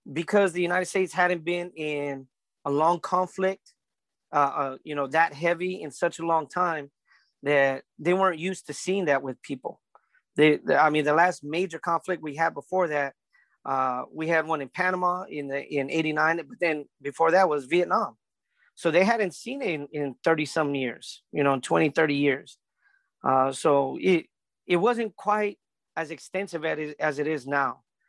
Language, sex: English, male